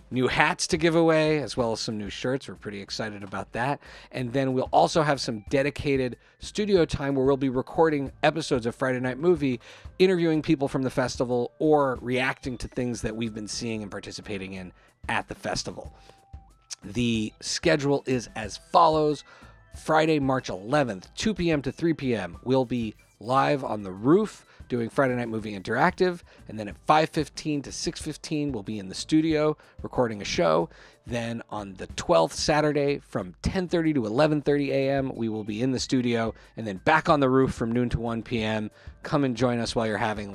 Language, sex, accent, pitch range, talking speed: English, male, American, 110-145 Hz, 190 wpm